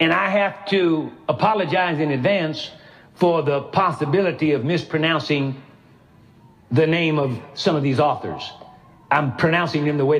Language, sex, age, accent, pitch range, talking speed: English, male, 60-79, American, 135-185 Hz, 140 wpm